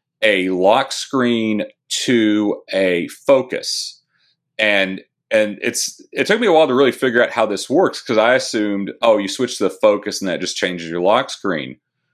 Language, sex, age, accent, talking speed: English, male, 40-59, American, 185 wpm